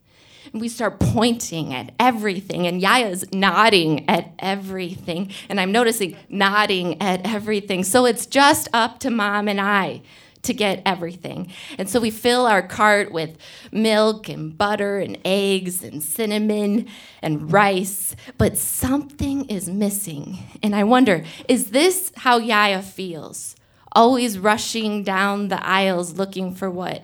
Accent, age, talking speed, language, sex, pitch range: American, 20-39, 140 wpm, English, female, 180-225 Hz